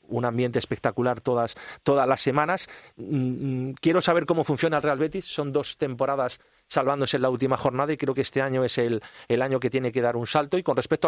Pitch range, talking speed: 125-150 Hz, 215 wpm